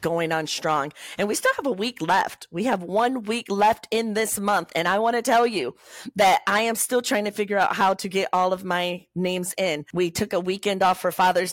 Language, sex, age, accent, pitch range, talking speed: English, female, 40-59, American, 165-210 Hz, 245 wpm